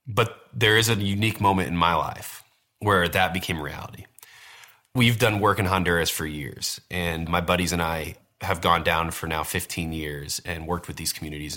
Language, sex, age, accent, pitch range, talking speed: English, male, 20-39, American, 85-105 Hz, 190 wpm